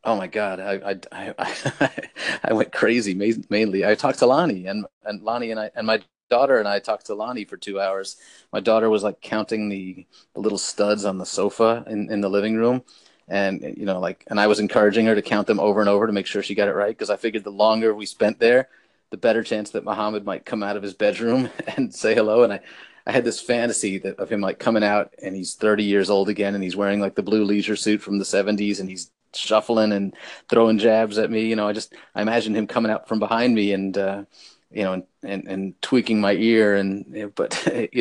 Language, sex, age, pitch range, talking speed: English, male, 30-49, 100-110 Hz, 245 wpm